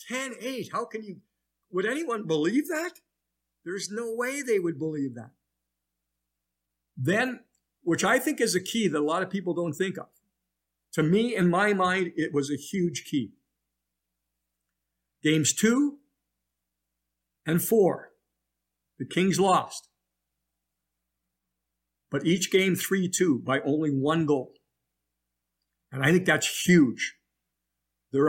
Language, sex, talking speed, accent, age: English, male, 130 wpm, American, 50-69